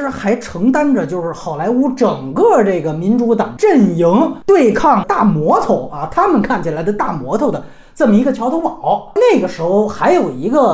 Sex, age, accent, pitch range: male, 30-49, native, 195-280 Hz